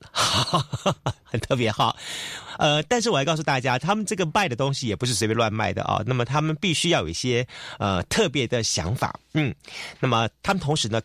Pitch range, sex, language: 100-140 Hz, male, Chinese